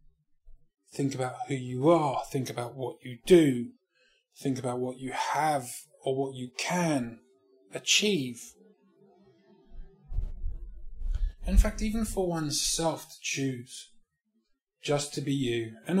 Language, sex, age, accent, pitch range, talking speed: English, male, 20-39, British, 120-155 Hz, 120 wpm